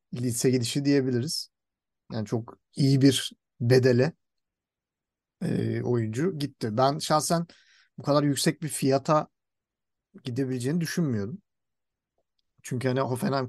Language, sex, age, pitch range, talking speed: Turkish, male, 50-69, 125-165 Hz, 100 wpm